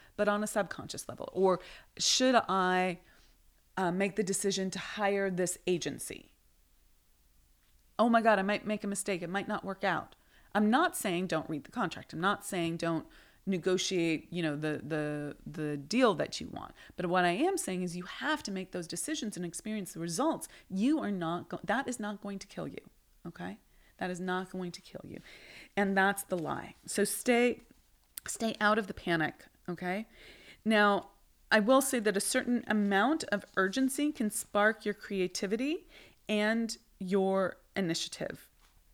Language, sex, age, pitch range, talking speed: English, female, 30-49, 175-215 Hz, 175 wpm